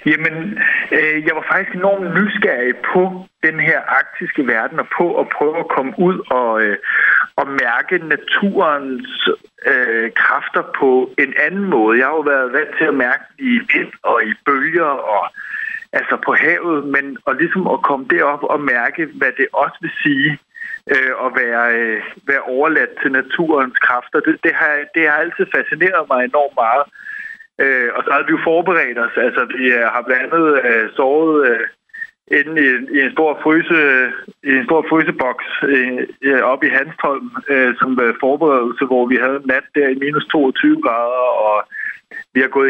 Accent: native